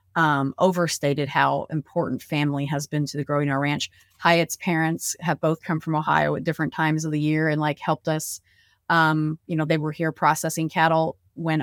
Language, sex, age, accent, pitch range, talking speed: English, female, 30-49, American, 140-165 Hz, 195 wpm